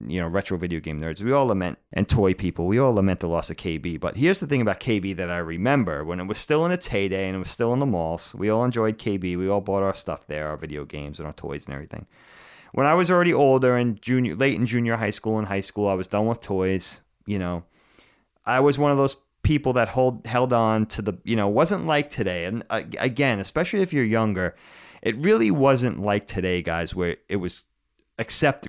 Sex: male